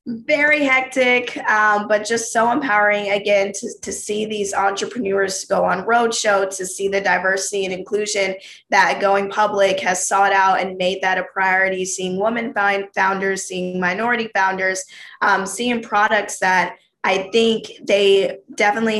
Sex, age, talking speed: female, 20-39, 150 wpm